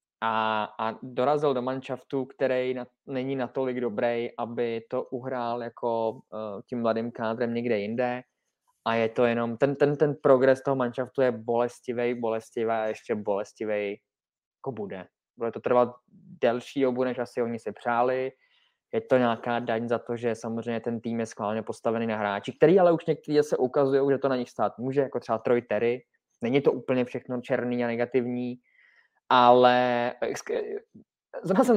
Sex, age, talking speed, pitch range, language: male, 20-39, 165 wpm, 120-145 Hz, Czech